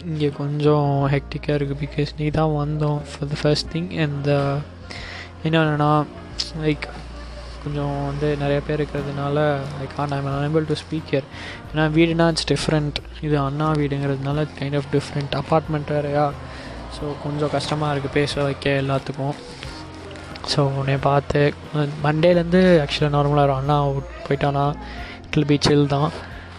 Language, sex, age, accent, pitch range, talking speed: Tamil, male, 20-39, native, 140-150 Hz, 135 wpm